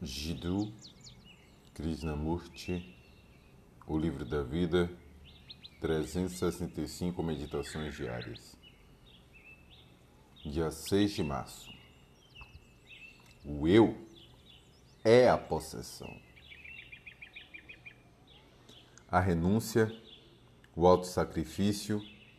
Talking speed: 60 wpm